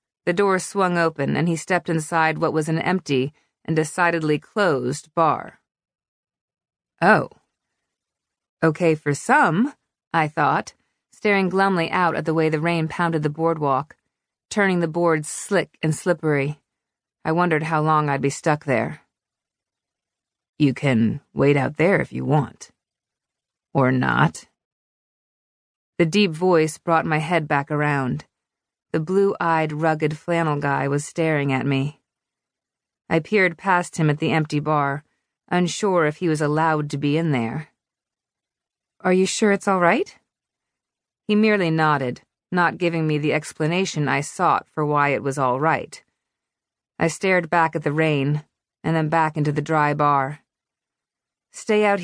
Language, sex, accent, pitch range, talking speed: English, female, American, 150-175 Hz, 150 wpm